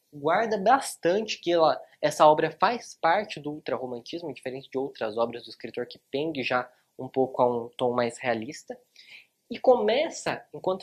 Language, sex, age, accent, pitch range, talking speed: Portuguese, male, 20-39, Brazilian, 140-225 Hz, 160 wpm